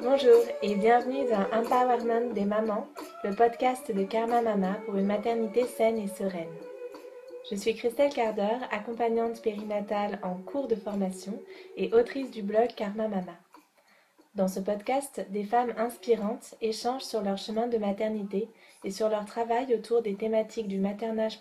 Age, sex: 20-39, female